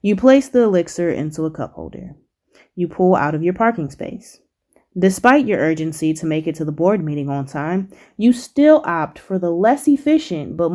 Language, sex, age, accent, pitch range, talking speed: English, female, 20-39, American, 160-205 Hz, 195 wpm